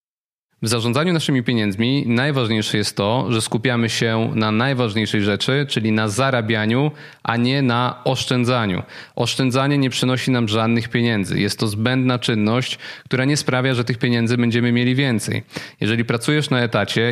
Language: Polish